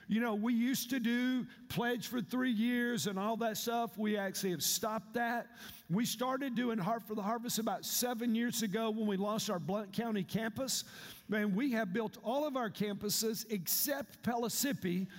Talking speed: 185 wpm